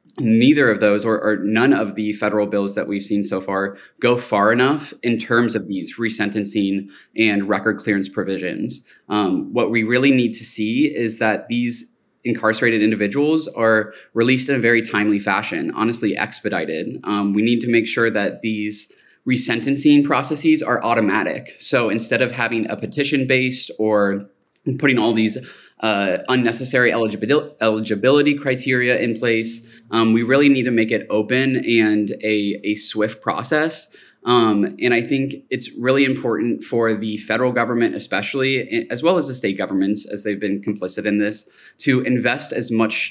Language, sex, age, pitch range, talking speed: English, male, 20-39, 105-125 Hz, 165 wpm